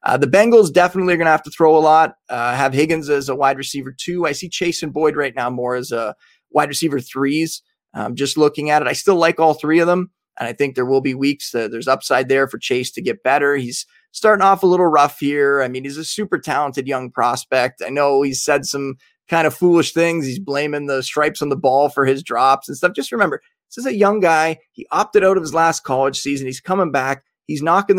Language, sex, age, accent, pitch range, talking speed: English, male, 20-39, American, 135-175 Hz, 255 wpm